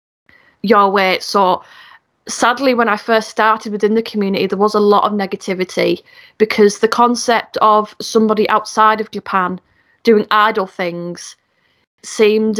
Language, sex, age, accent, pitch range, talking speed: English, female, 20-39, British, 200-225 Hz, 140 wpm